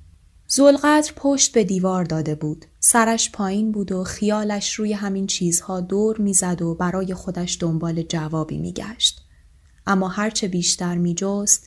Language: Persian